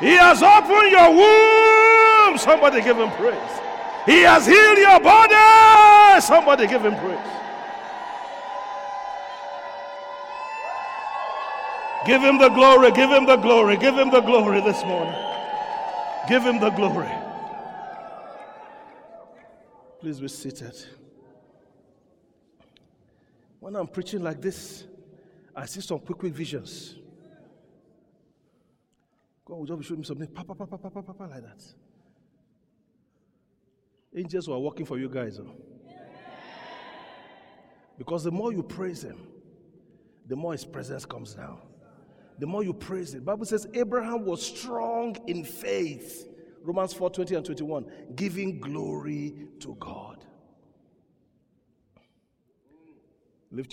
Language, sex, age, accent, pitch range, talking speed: English, male, 50-69, Nigerian, 160-255 Hz, 120 wpm